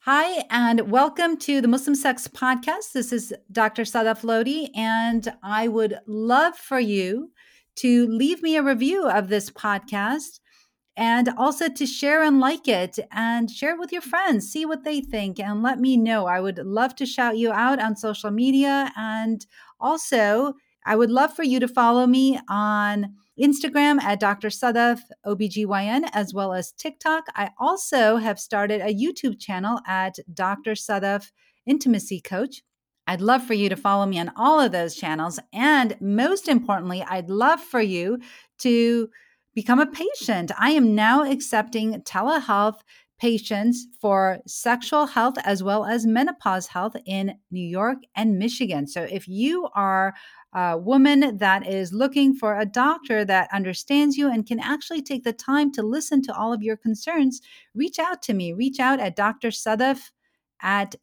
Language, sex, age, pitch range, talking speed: English, female, 40-59, 205-270 Hz, 165 wpm